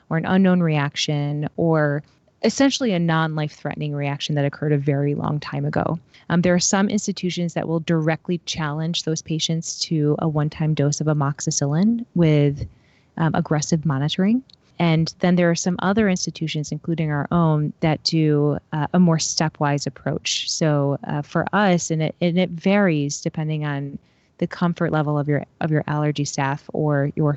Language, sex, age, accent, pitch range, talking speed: English, female, 20-39, American, 150-175 Hz, 160 wpm